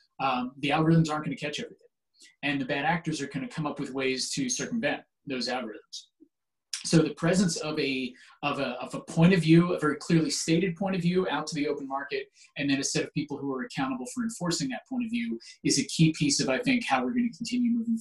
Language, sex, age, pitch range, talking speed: English, male, 30-49, 135-205 Hz, 250 wpm